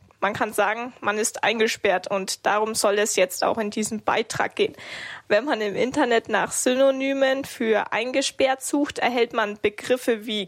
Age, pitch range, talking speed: 20-39, 215-250 Hz, 165 wpm